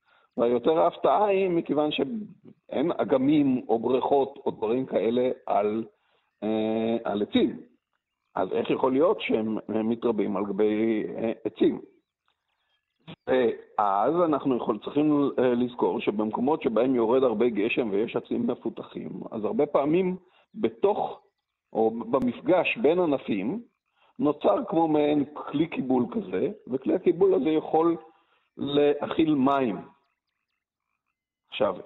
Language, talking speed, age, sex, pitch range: Hebrew, 105 wpm, 50-69, male, 125-185 Hz